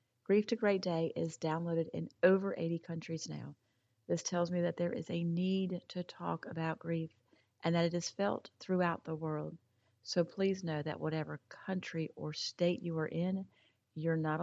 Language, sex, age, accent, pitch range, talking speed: English, female, 40-59, American, 155-180 Hz, 185 wpm